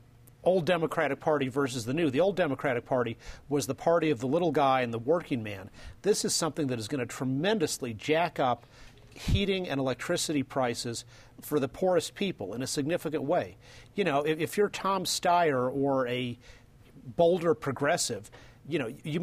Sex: male